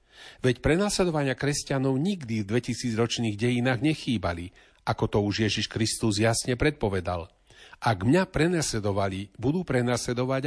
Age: 40-59